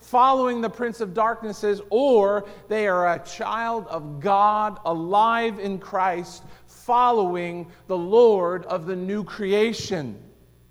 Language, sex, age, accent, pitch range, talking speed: English, male, 50-69, American, 155-220 Hz, 125 wpm